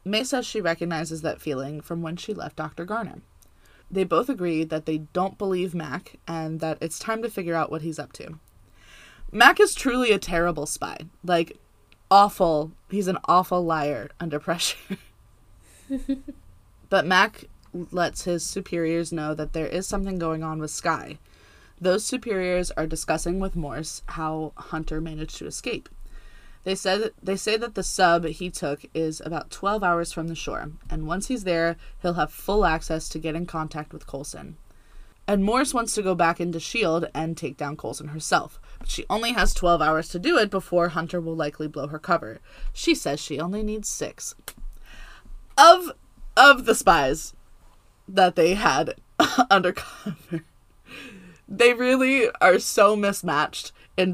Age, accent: 20-39, American